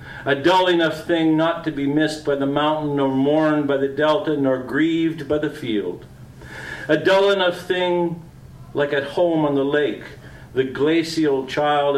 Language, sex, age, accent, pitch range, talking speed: English, male, 50-69, American, 135-160 Hz, 170 wpm